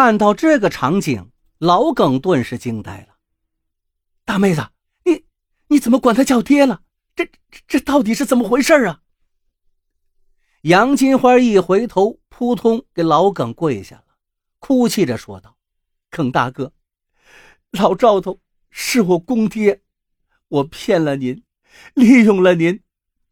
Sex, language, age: male, Chinese, 50-69